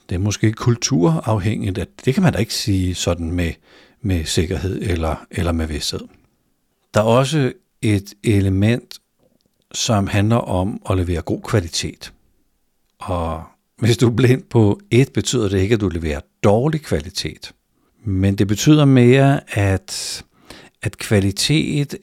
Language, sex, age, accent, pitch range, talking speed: Danish, male, 60-79, native, 90-120 Hz, 145 wpm